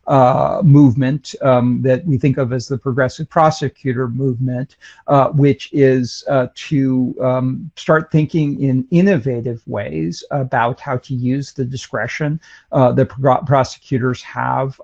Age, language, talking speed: 50-69, English, 140 wpm